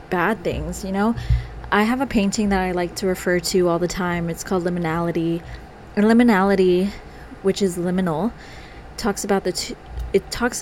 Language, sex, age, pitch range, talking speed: English, female, 20-39, 175-200 Hz, 165 wpm